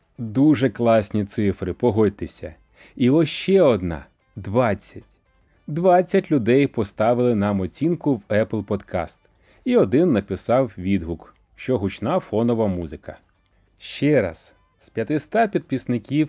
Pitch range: 100-150 Hz